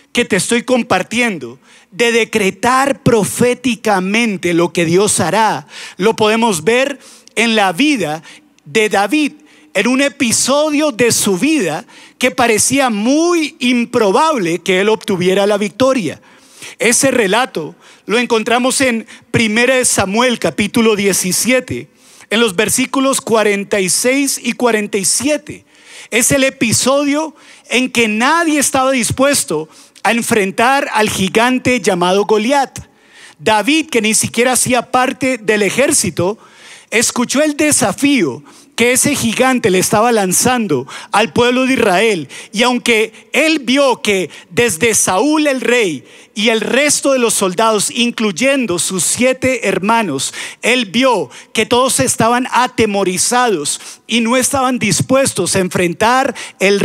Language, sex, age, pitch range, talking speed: Spanish, male, 50-69, 210-260 Hz, 120 wpm